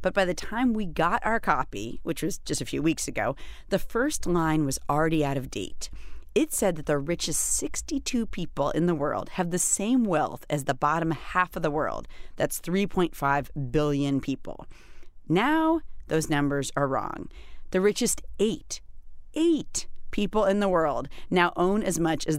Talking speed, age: 175 wpm, 30-49